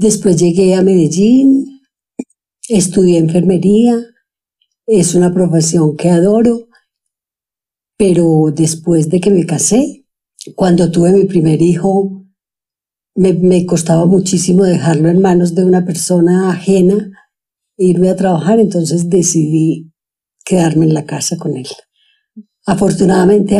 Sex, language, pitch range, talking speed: female, Spanish, 160-190 Hz, 115 wpm